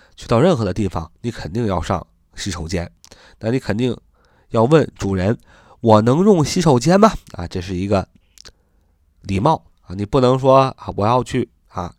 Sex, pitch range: male, 100-135 Hz